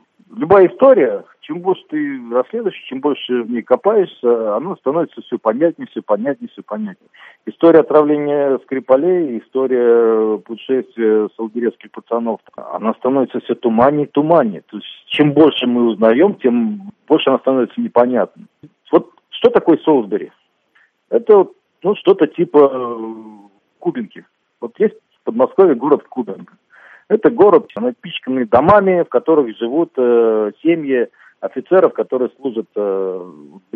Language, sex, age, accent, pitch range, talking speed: Russian, male, 50-69, native, 115-180 Hz, 120 wpm